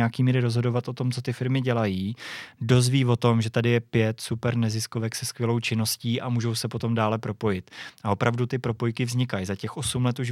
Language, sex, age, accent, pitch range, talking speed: Czech, male, 20-39, native, 110-120 Hz, 215 wpm